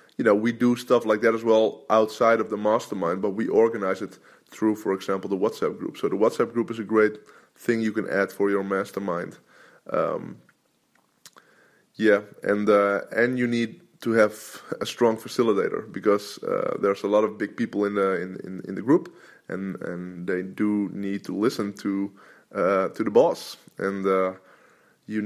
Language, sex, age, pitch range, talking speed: English, male, 20-39, 100-110 Hz, 190 wpm